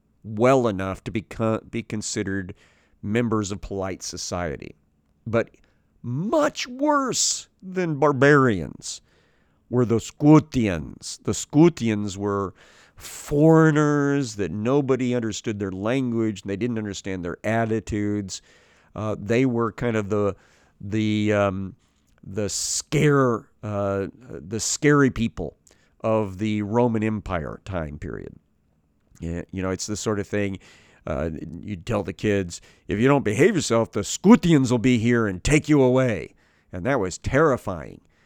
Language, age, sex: English, 50-69, male